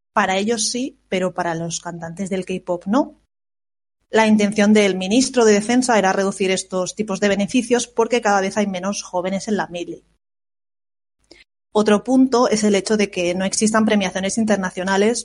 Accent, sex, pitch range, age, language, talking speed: Spanish, female, 185-210 Hz, 20-39, Spanish, 165 wpm